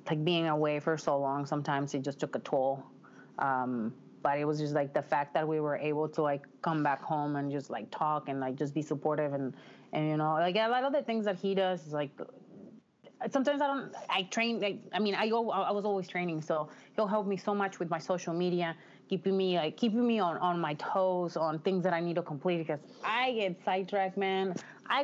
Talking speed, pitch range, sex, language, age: 235 wpm, 155-205 Hz, female, English, 30-49